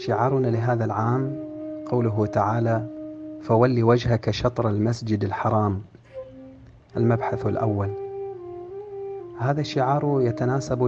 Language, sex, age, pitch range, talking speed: Arabic, male, 40-59, 115-140 Hz, 85 wpm